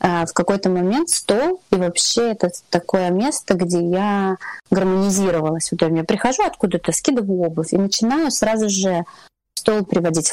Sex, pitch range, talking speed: female, 175-215 Hz, 140 wpm